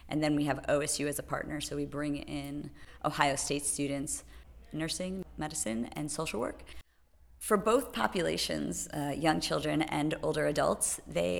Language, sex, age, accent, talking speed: English, female, 30-49, American, 160 wpm